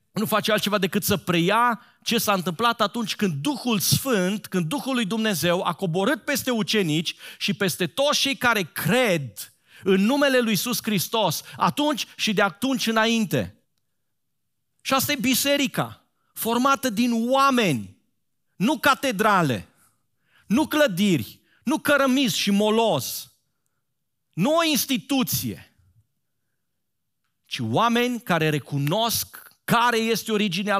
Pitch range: 185-245 Hz